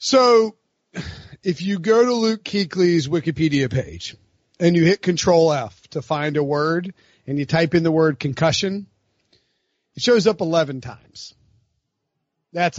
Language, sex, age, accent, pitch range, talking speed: English, male, 30-49, American, 135-165 Hz, 145 wpm